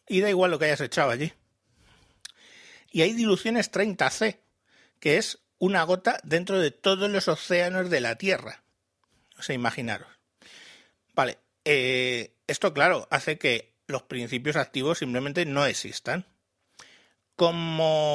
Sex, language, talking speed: male, Spanish, 130 wpm